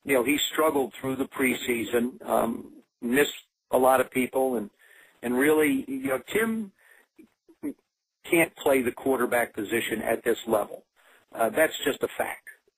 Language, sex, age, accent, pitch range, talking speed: English, male, 50-69, American, 120-145 Hz, 150 wpm